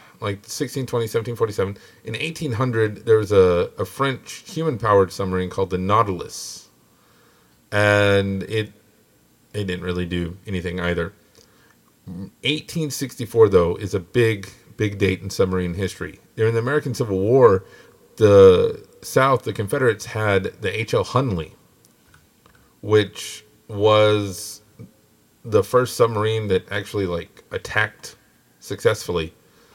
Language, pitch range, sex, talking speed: English, 95-115 Hz, male, 115 wpm